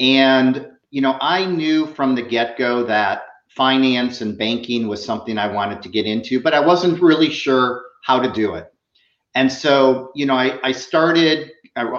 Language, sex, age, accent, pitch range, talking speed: English, male, 40-59, American, 130-175 Hz, 185 wpm